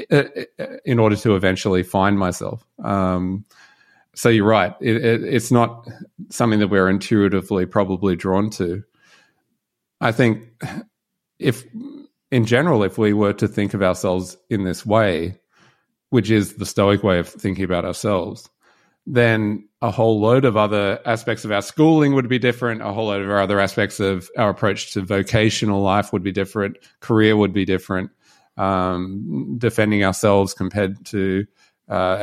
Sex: male